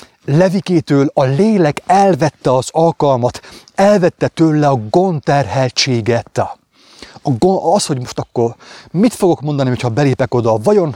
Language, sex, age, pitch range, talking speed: English, male, 30-49, 120-165 Hz, 125 wpm